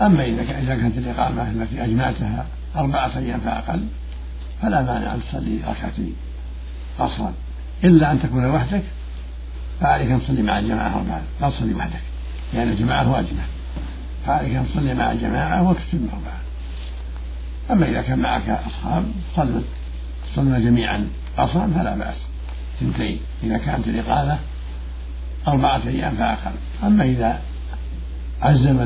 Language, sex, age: Arabic, male, 60-79